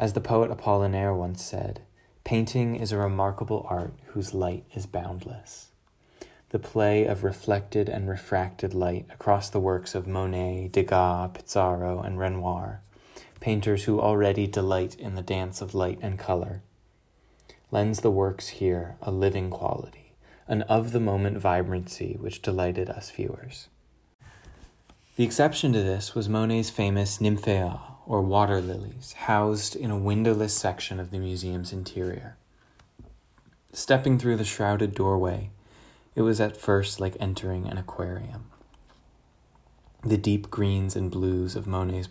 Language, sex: English, male